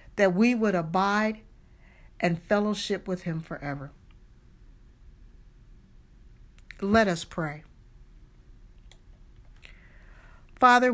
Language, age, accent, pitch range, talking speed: English, 50-69, American, 175-225 Hz, 70 wpm